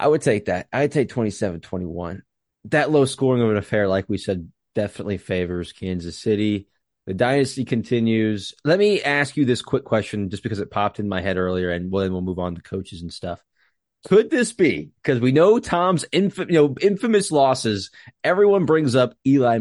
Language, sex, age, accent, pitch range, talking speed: English, male, 20-39, American, 105-155 Hz, 195 wpm